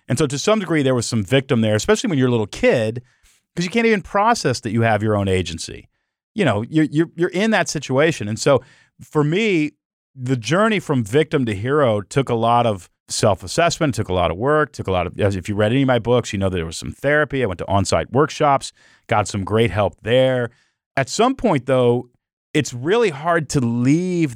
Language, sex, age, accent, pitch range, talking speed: English, male, 40-59, American, 100-140 Hz, 225 wpm